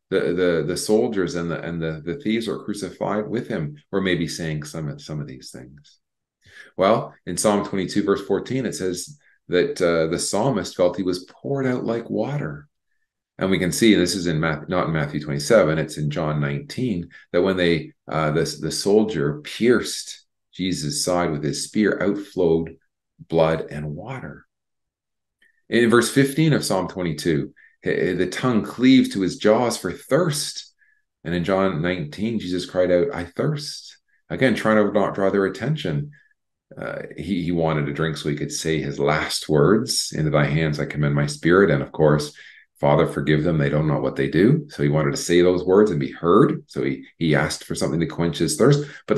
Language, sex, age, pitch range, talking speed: English, male, 40-59, 75-105 Hz, 195 wpm